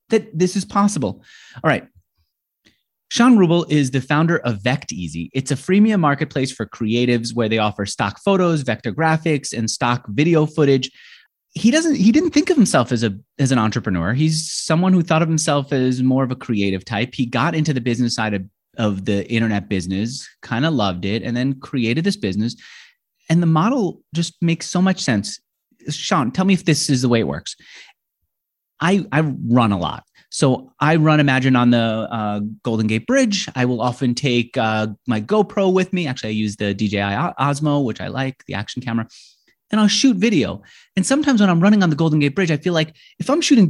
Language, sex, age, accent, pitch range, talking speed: English, male, 30-49, American, 120-185 Hz, 205 wpm